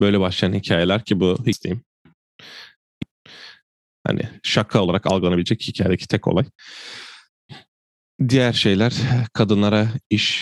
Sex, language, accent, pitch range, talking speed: male, Turkish, native, 90-105 Hz, 100 wpm